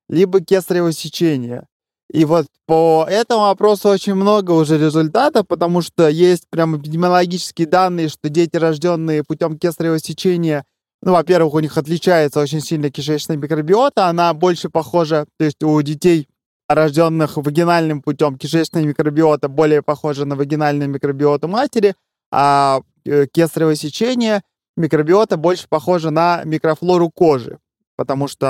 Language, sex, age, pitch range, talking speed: Russian, male, 20-39, 145-175 Hz, 130 wpm